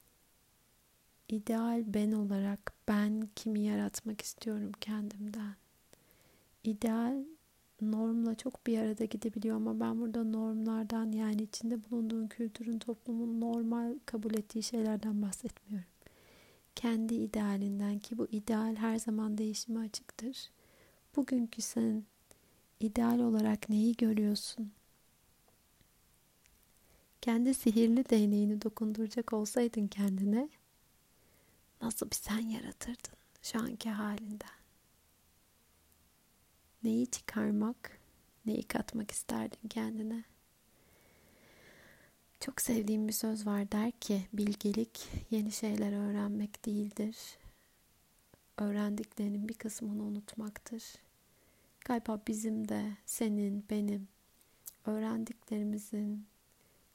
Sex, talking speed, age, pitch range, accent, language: female, 90 wpm, 40-59, 210-230 Hz, native, Turkish